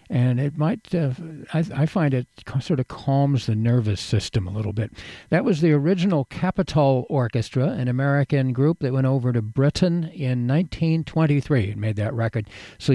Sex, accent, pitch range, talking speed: male, American, 125-150 Hz, 175 wpm